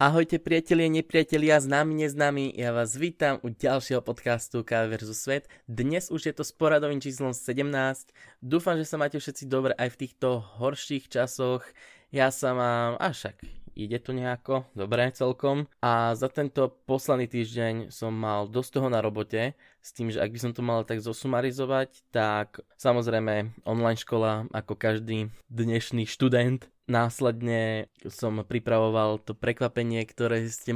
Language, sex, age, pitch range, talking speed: Slovak, male, 20-39, 115-130 Hz, 155 wpm